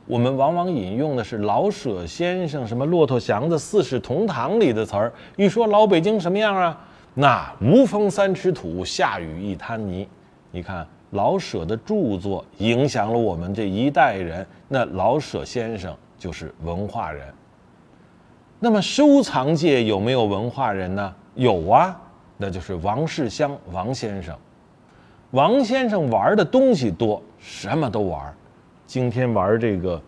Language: Chinese